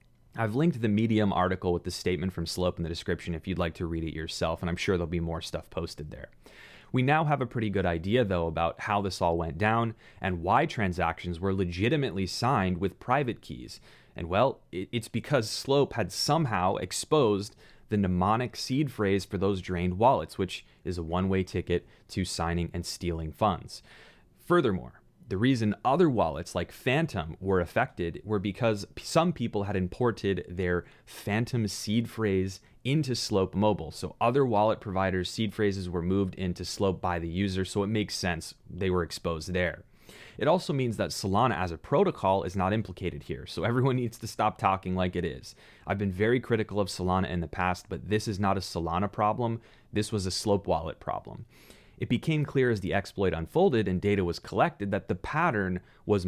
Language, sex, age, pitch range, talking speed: English, male, 30-49, 90-115 Hz, 190 wpm